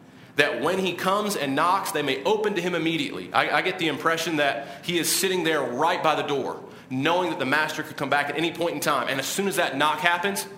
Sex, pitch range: male, 140-180 Hz